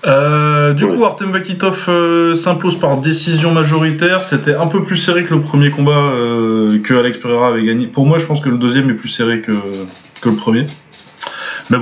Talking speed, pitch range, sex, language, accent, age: 205 wpm, 105-140 Hz, male, French, French, 20-39